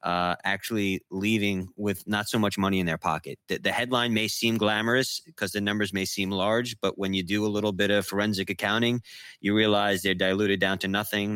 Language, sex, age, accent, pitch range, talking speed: English, male, 30-49, American, 90-110 Hz, 210 wpm